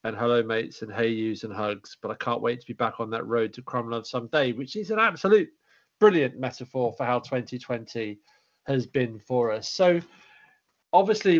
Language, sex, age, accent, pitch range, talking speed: English, male, 40-59, British, 120-150 Hz, 190 wpm